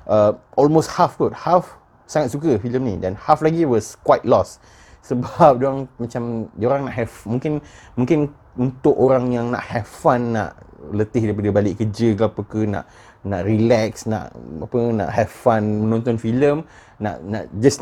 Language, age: Malay, 30-49